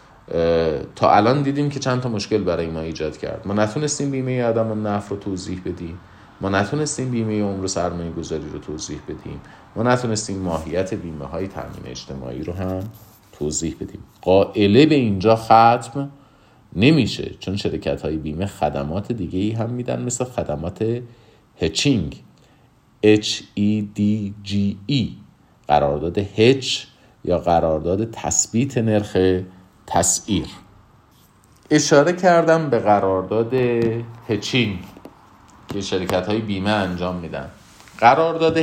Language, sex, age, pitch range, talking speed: Persian, male, 40-59, 90-120 Hz, 120 wpm